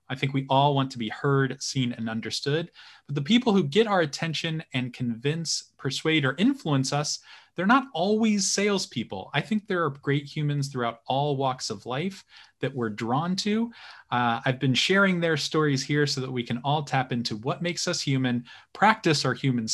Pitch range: 125-165 Hz